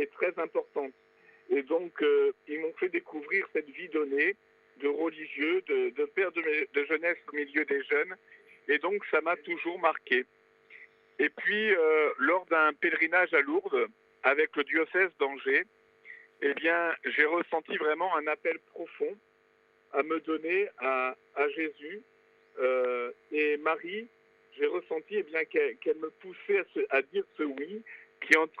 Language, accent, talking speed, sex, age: French, French, 160 wpm, male, 50-69